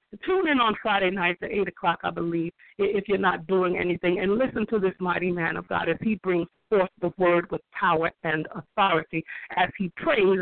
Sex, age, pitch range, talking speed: female, 50-69, 180-245 Hz, 205 wpm